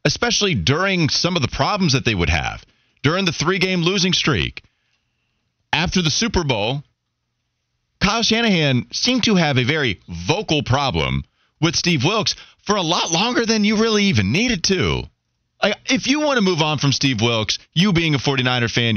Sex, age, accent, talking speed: male, 30-49, American, 175 wpm